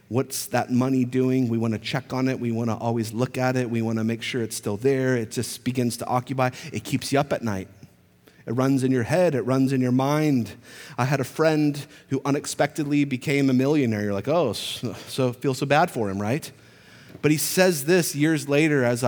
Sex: male